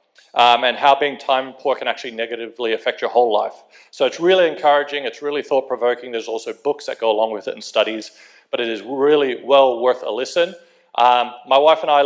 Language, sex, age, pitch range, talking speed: English, male, 40-59, 120-180 Hz, 215 wpm